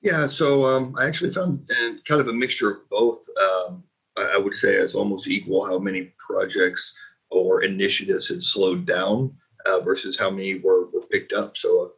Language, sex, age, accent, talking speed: English, male, 30-49, American, 185 wpm